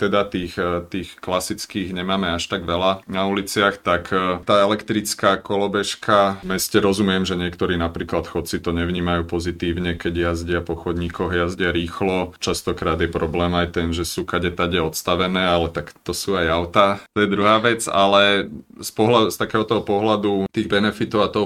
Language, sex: Slovak, male